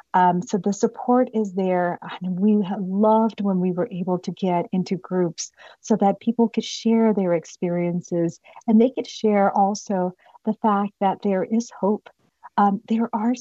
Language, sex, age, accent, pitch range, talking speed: English, female, 40-59, American, 180-205 Hz, 175 wpm